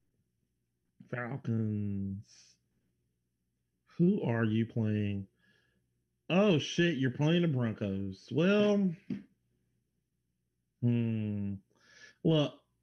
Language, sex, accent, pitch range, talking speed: English, male, American, 105-170 Hz, 65 wpm